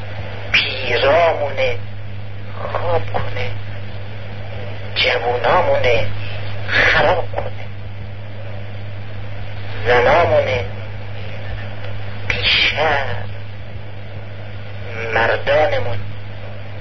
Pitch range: 100-105 Hz